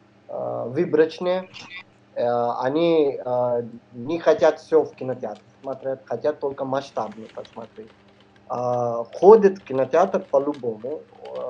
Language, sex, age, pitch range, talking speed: Russian, male, 20-39, 115-150 Hz, 85 wpm